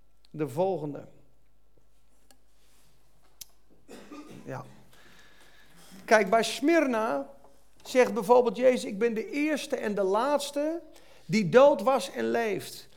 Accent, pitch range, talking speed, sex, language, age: Dutch, 195-260 Hz, 95 wpm, male, Dutch, 40-59